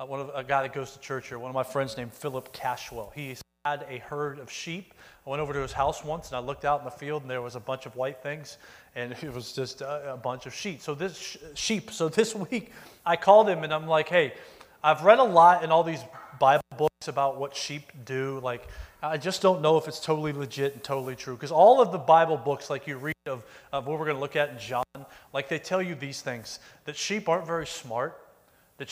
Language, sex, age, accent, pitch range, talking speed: English, male, 30-49, American, 140-185 Hz, 250 wpm